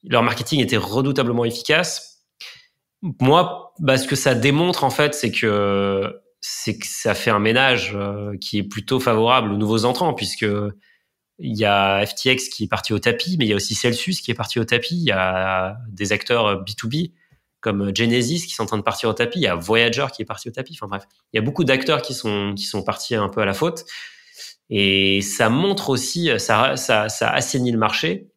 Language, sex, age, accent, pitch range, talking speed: French, male, 30-49, French, 105-140 Hz, 210 wpm